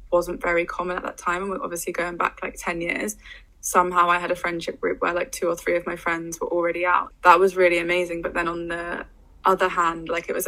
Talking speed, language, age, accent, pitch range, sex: 250 wpm, English, 20-39, British, 170-185 Hz, female